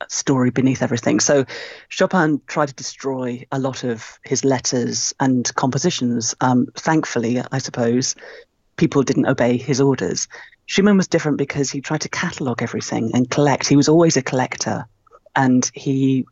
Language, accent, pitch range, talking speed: English, British, 125-145 Hz, 155 wpm